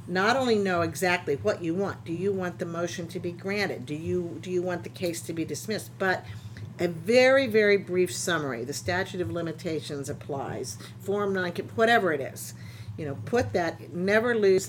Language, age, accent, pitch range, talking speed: English, 50-69, American, 145-195 Hz, 190 wpm